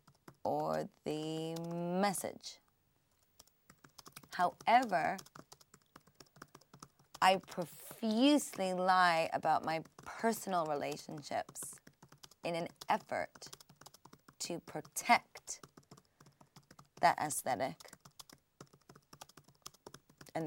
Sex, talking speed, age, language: female, 55 wpm, 20-39, English